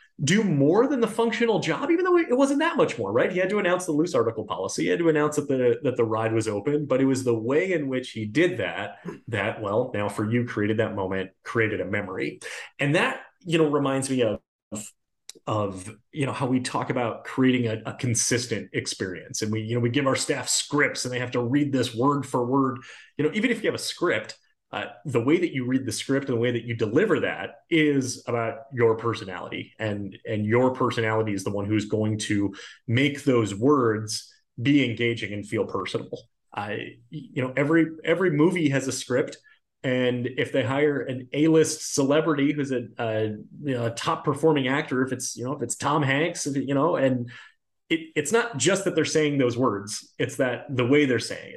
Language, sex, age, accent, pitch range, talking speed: English, male, 30-49, American, 115-150 Hz, 220 wpm